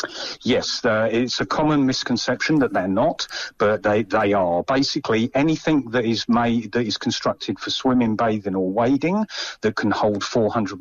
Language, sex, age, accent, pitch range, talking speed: English, male, 40-59, British, 100-130 Hz, 170 wpm